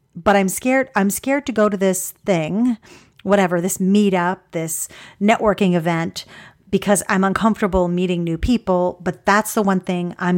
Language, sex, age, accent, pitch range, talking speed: English, female, 40-59, American, 175-225 Hz, 160 wpm